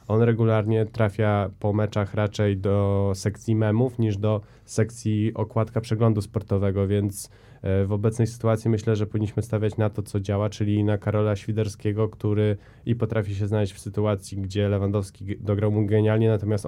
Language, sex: Polish, male